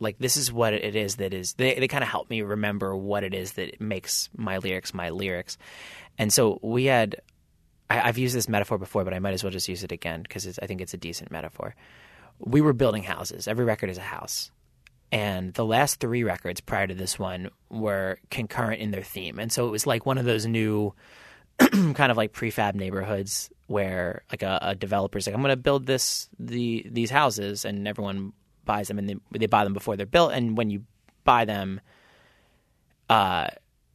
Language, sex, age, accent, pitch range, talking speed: English, male, 20-39, American, 95-120 Hz, 215 wpm